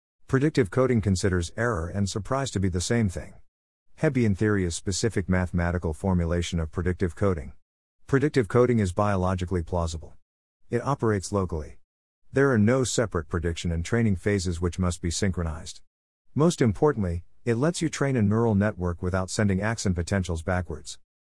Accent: American